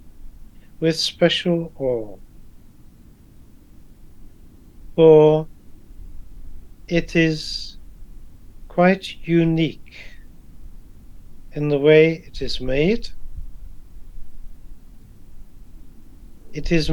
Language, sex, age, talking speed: English, male, 60-79, 55 wpm